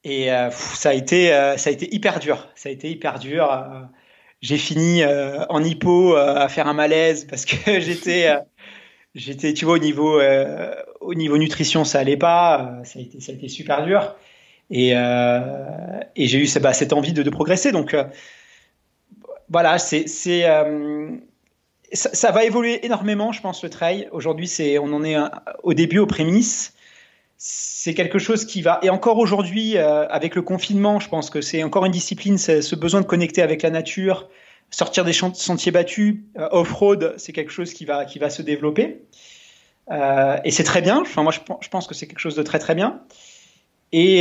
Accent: French